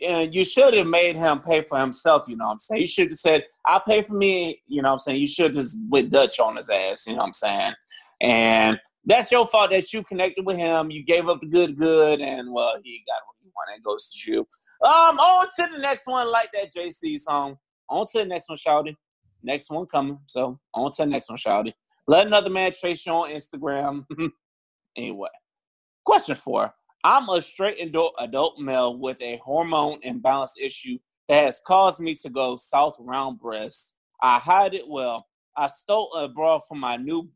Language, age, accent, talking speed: English, 30-49, American, 215 wpm